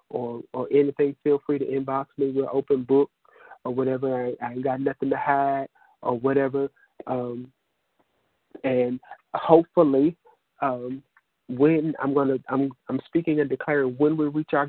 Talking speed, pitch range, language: 160 wpm, 130-140 Hz, English